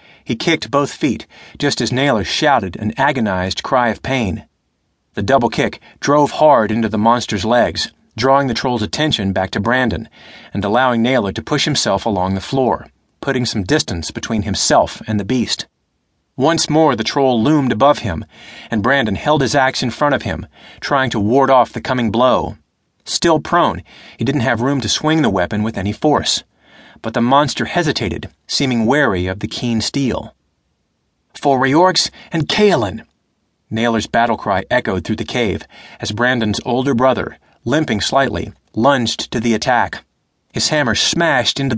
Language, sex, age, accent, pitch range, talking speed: English, male, 30-49, American, 110-140 Hz, 170 wpm